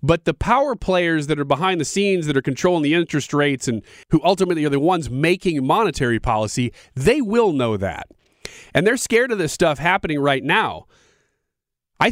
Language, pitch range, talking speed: English, 120-165 Hz, 190 wpm